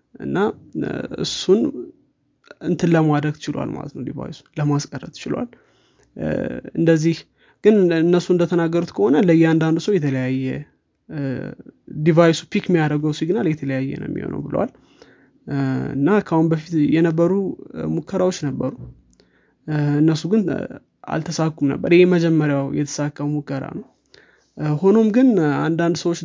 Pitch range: 145-165 Hz